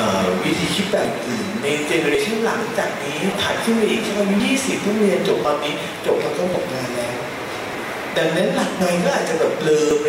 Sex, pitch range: male, 185-230 Hz